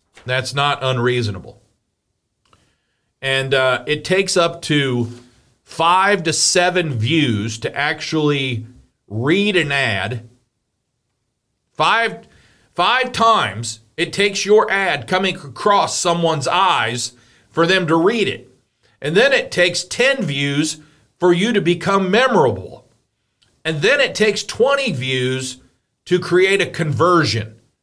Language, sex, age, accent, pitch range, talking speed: English, male, 40-59, American, 125-185 Hz, 120 wpm